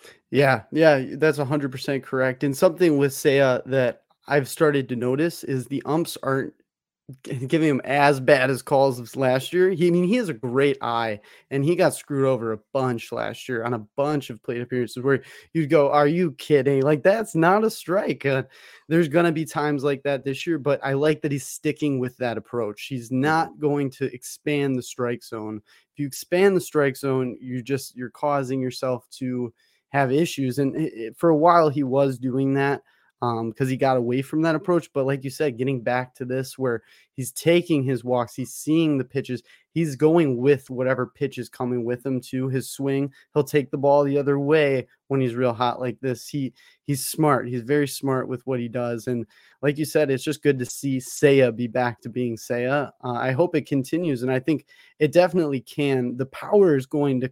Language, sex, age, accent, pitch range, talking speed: English, male, 20-39, American, 125-150 Hz, 210 wpm